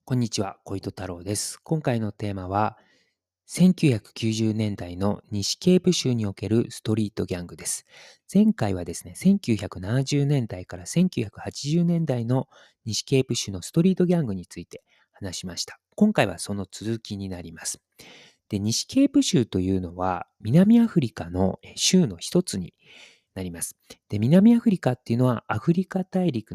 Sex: male